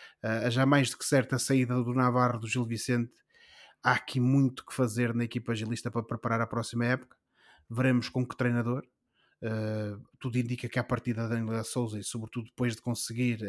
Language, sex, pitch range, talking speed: Portuguese, male, 115-125 Hz, 195 wpm